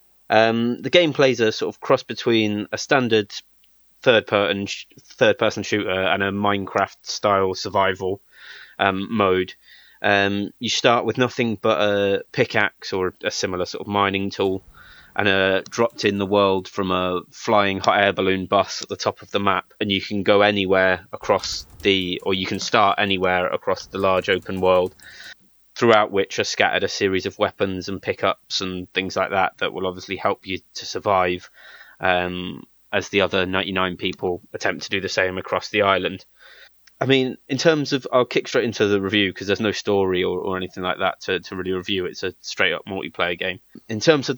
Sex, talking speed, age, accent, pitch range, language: male, 185 wpm, 20-39, British, 95-110 Hz, English